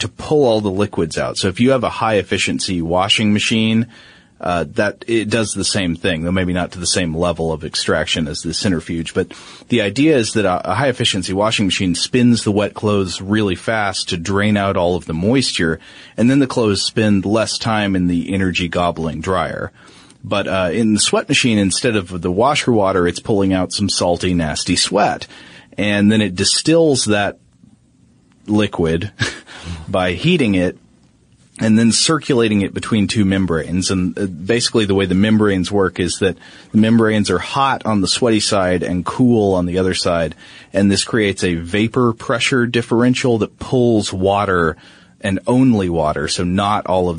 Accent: American